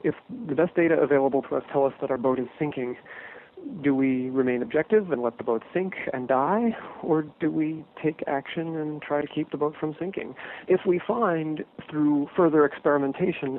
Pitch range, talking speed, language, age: 130-155 Hz, 195 wpm, English, 40-59